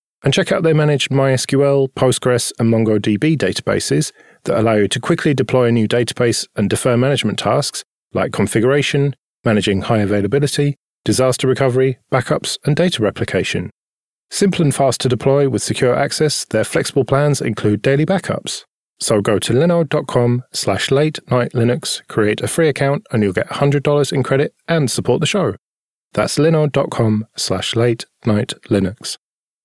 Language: English